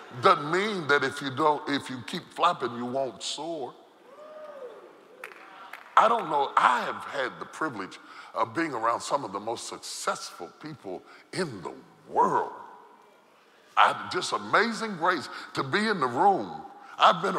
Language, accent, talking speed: English, American, 150 wpm